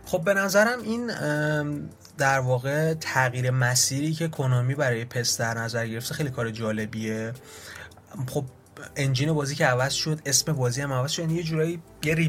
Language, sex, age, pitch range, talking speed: Persian, male, 30-49, 120-150 Hz, 150 wpm